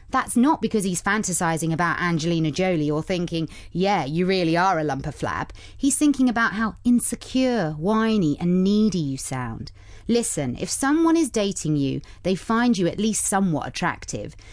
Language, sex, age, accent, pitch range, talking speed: English, female, 30-49, British, 155-240 Hz, 170 wpm